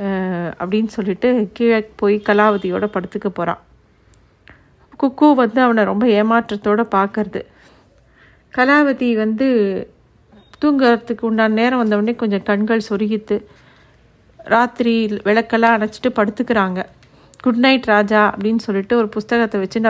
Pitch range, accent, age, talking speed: 205-235 Hz, native, 50-69, 105 wpm